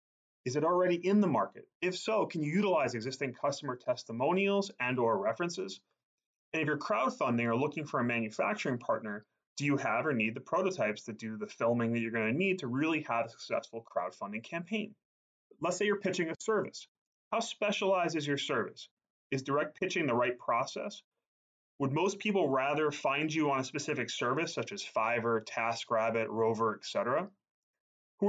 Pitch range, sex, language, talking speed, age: 120-185 Hz, male, English, 180 wpm, 30-49